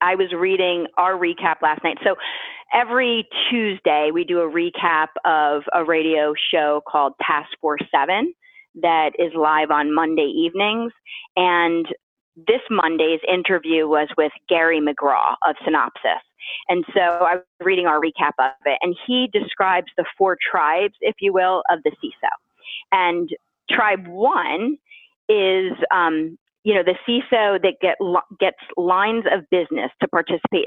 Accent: American